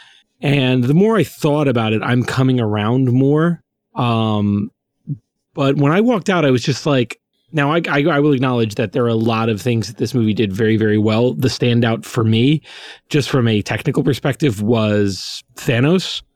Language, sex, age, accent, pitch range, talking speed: English, male, 30-49, American, 110-140 Hz, 190 wpm